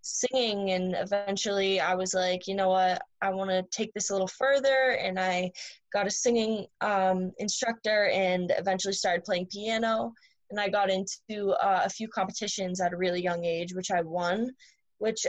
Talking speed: 180 wpm